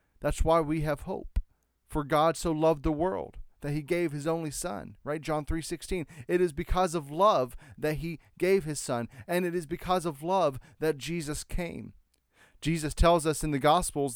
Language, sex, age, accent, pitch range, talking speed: English, male, 30-49, American, 135-180 Hz, 195 wpm